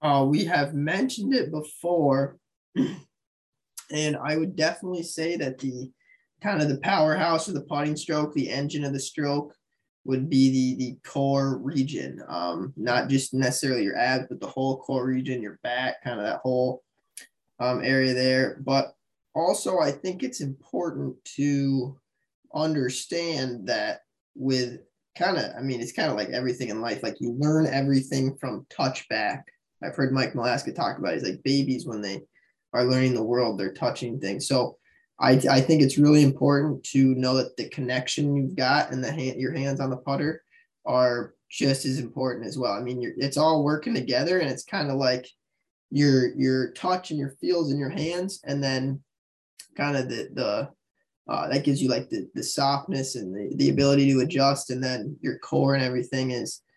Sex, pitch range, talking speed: male, 130-145 Hz, 185 wpm